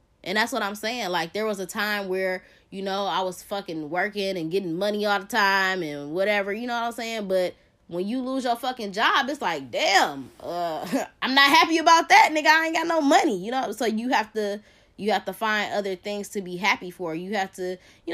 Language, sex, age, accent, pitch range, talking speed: English, female, 20-39, American, 180-225 Hz, 230 wpm